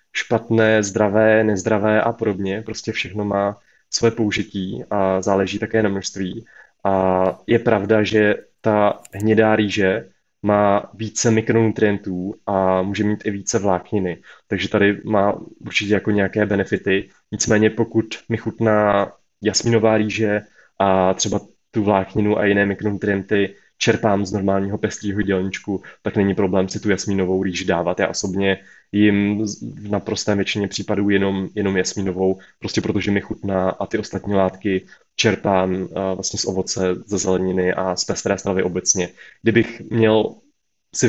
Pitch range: 95-110 Hz